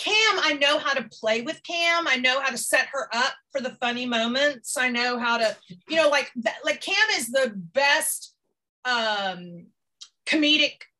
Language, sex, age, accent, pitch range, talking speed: English, female, 40-59, American, 225-310 Hz, 180 wpm